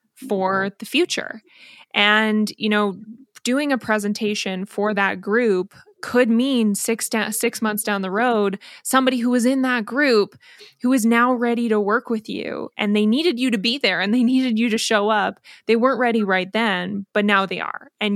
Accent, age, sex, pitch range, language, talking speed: American, 20-39, female, 205-235 Hz, English, 190 wpm